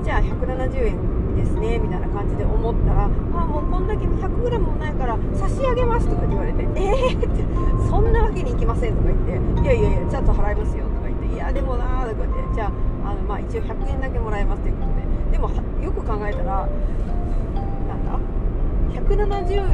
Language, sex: Japanese, female